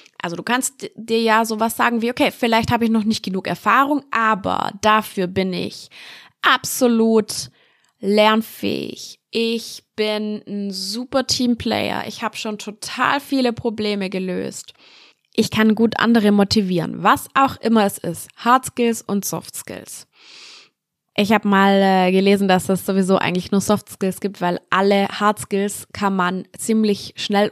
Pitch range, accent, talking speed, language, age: 185-230 Hz, German, 155 wpm, German, 20-39